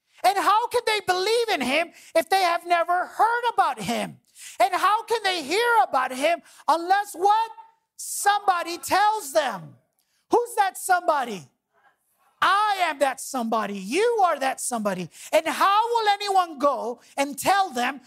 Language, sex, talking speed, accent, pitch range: English, male, 150 wpm, American, 250-370 Hz